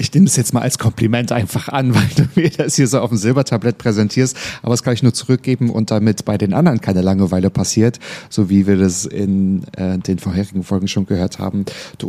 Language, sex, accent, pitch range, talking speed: German, male, German, 100-120 Hz, 230 wpm